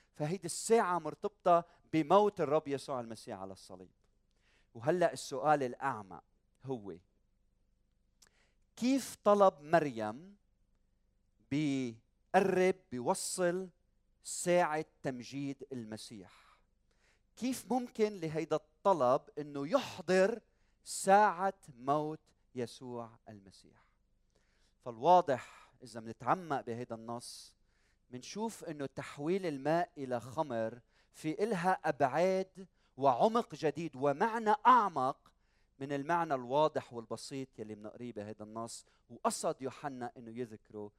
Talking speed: 90 wpm